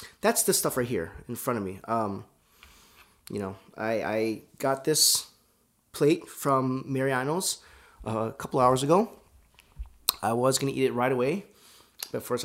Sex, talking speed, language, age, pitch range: male, 160 wpm, English, 30-49, 105-140 Hz